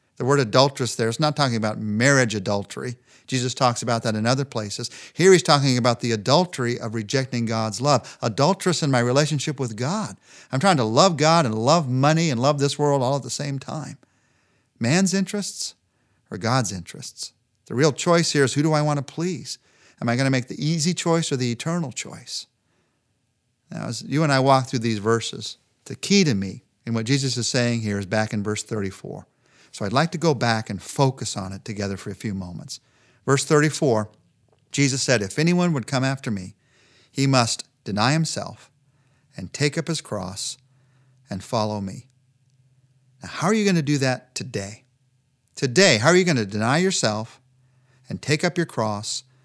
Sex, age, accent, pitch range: male, 50-69, American, 115-150 Hz